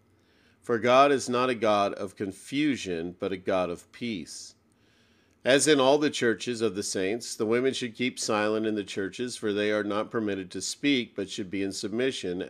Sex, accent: male, American